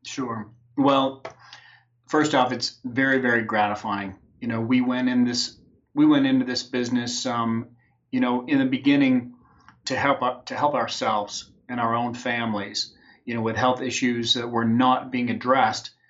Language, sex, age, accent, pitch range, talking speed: English, male, 30-49, American, 120-130 Hz, 165 wpm